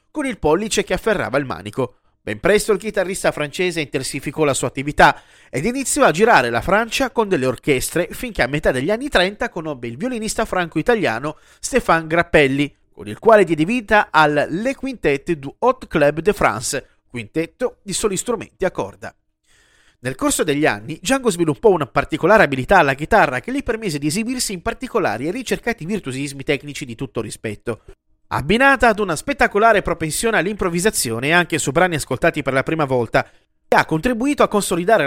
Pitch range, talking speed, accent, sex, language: 140-220 Hz, 170 wpm, native, male, Italian